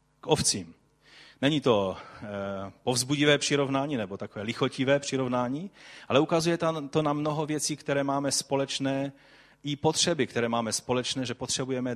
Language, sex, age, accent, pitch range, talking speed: Czech, male, 30-49, native, 120-150 Hz, 135 wpm